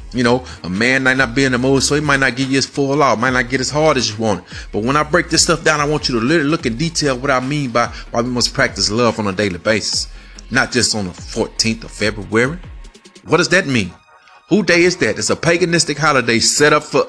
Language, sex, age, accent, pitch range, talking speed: English, male, 30-49, American, 115-150 Hz, 275 wpm